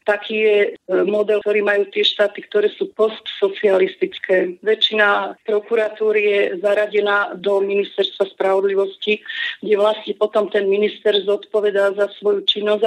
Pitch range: 200-225 Hz